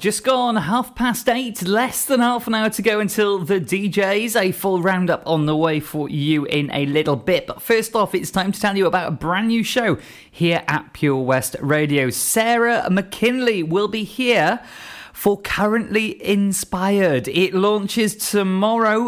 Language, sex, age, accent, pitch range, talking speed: English, male, 20-39, British, 150-200 Hz, 175 wpm